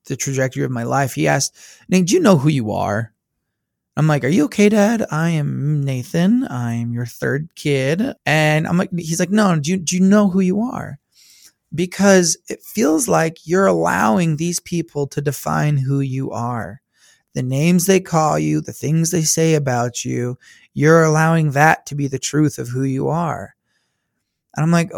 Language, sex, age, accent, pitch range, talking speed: English, male, 20-39, American, 130-175 Hz, 190 wpm